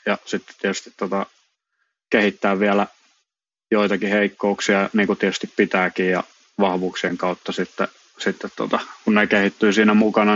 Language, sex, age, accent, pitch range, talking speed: Finnish, male, 20-39, native, 95-110 Hz, 125 wpm